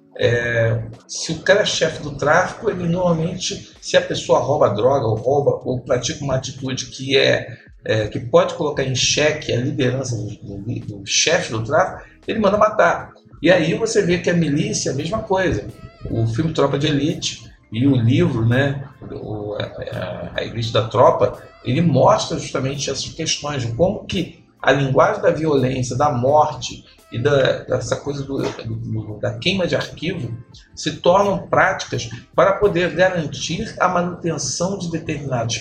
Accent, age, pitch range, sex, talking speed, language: Brazilian, 50-69, 125-165 Hz, male, 165 wpm, Portuguese